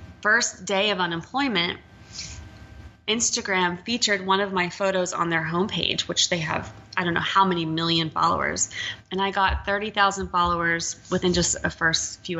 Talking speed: 160 wpm